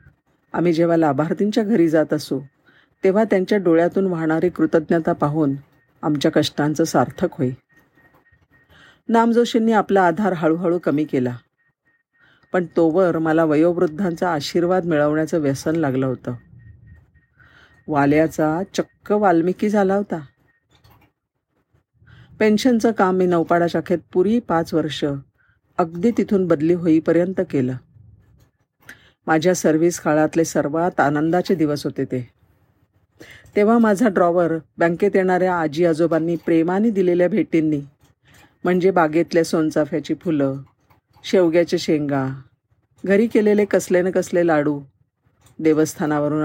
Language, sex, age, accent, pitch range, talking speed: Marathi, female, 40-59, native, 145-185 Hz, 100 wpm